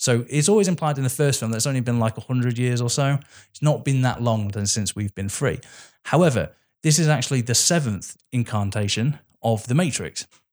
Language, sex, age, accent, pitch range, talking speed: English, male, 20-39, British, 105-140 Hz, 205 wpm